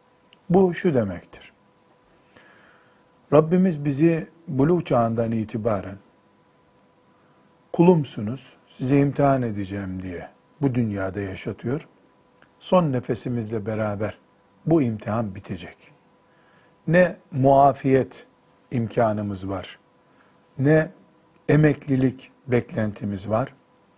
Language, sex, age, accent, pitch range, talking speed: Turkish, male, 50-69, native, 115-150 Hz, 75 wpm